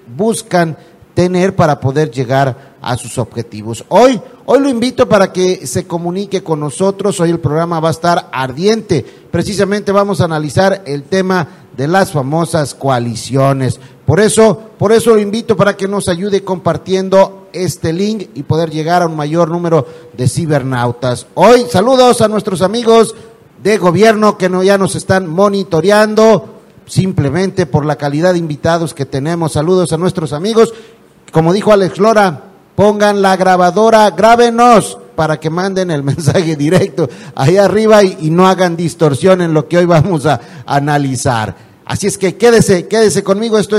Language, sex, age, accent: Spanish, male, 50-69, Mexican